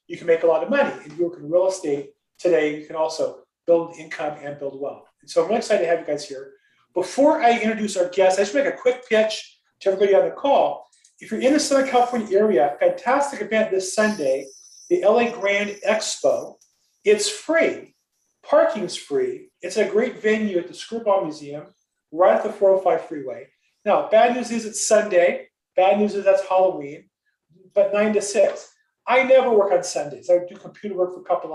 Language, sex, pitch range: English, male, 170-235 Hz